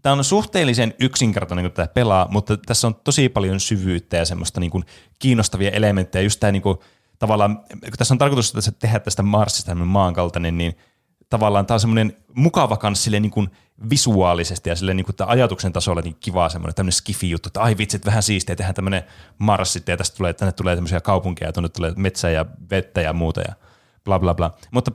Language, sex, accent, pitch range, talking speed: Finnish, male, native, 90-110 Hz, 190 wpm